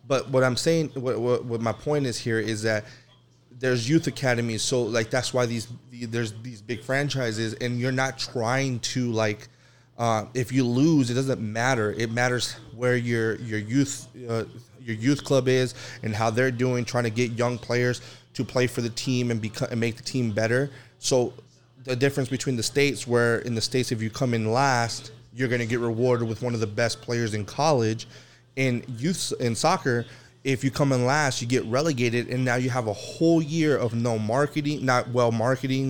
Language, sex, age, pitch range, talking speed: English, male, 20-39, 115-130 Hz, 205 wpm